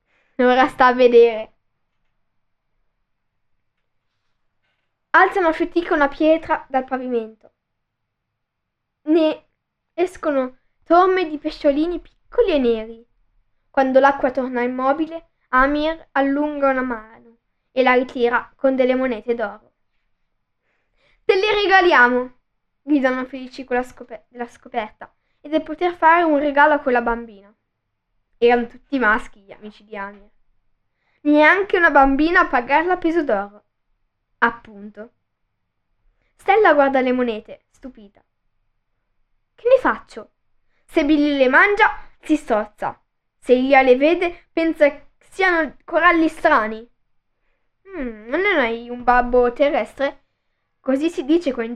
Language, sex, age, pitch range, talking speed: Italian, female, 10-29, 230-310 Hz, 115 wpm